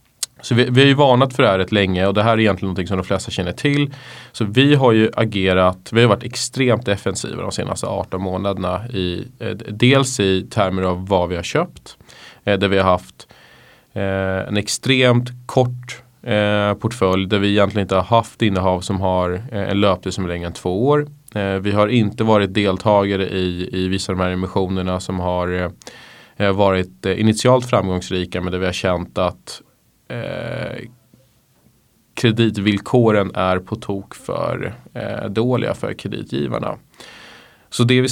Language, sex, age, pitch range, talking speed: Swedish, male, 20-39, 95-120 Hz, 160 wpm